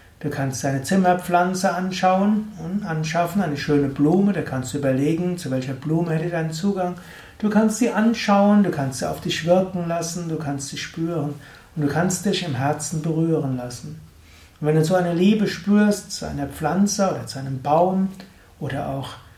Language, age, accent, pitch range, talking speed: German, 60-79, German, 145-180 Hz, 185 wpm